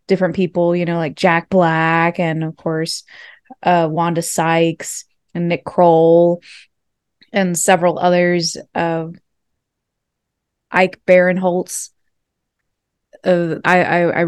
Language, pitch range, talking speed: English, 165-185 Hz, 110 wpm